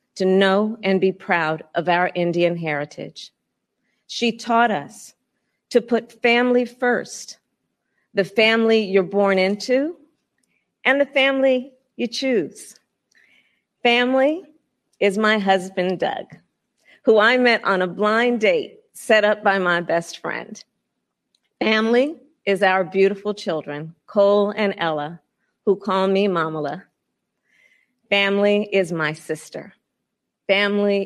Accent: American